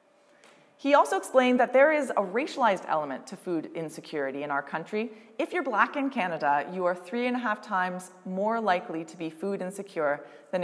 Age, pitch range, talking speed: 20-39, 185-280 Hz, 190 wpm